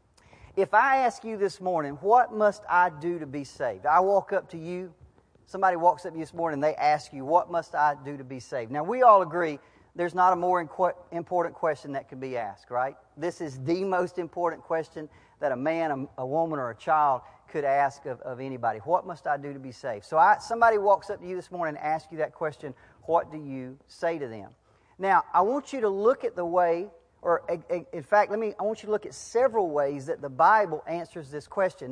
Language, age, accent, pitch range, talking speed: English, 40-59, American, 145-180 Hz, 235 wpm